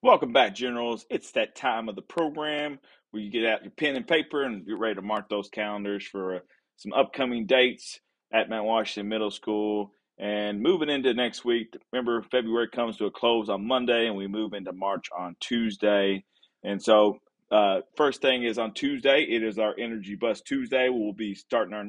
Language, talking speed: English, 195 wpm